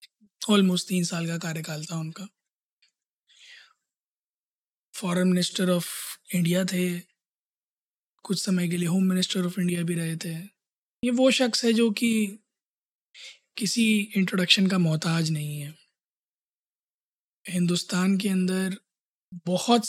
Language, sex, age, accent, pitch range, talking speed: Hindi, male, 20-39, native, 170-200 Hz, 120 wpm